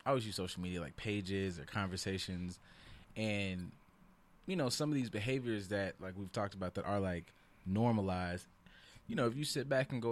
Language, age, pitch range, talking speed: English, 20-39, 95-115 Hz, 195 wpm